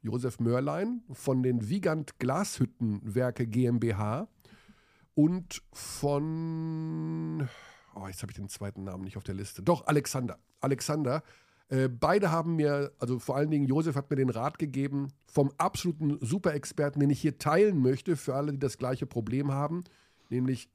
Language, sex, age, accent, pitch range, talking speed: German, male, 50-69, German, 115-155 Hz, 155 wpm